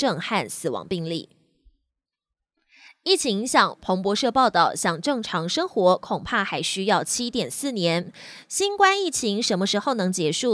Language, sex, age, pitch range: Chinese, female, 20-39, 185-260 Hz